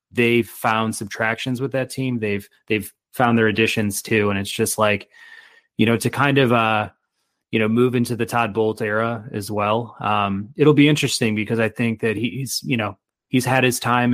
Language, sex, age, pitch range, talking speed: English, male, 20-39, 100-115 Hz, 200 wpm